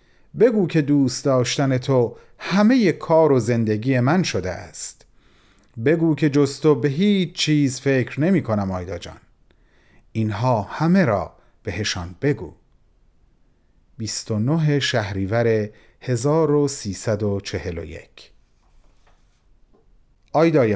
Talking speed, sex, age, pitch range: 95 wpm, male, 40-59, 115-165 Hz